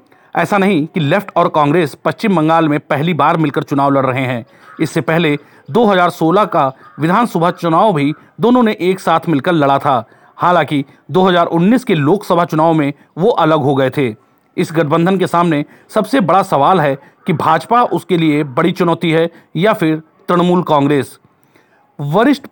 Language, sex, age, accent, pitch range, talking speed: Hindi, male, 40-59, native, 150-185 Hz, 165 wpm